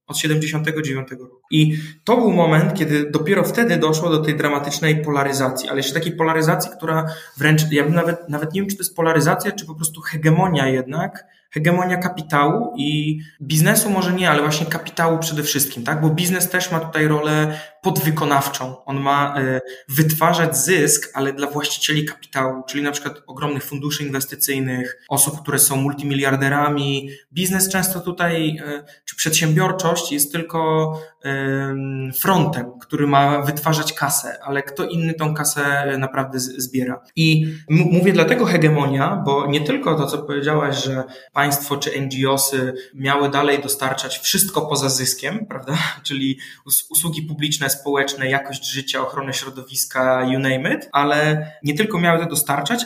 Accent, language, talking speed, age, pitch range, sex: native, Polish, 150 wpm, 20-39, 135-160 Hz, male